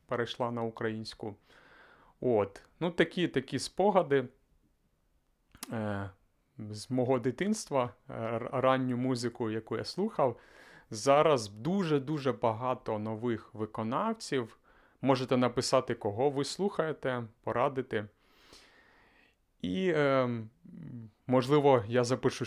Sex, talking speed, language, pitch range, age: male, 85 wpm, Ukrainian, 110-140 Hz, 30-49